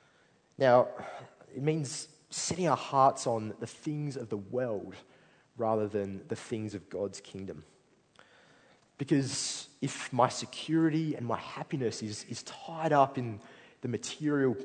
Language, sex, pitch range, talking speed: English, male, 110-140 Hz, 135 wpm